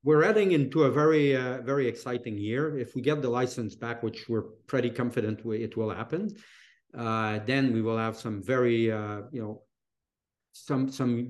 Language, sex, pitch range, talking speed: English, male, 115-135 Hz, 175 wpm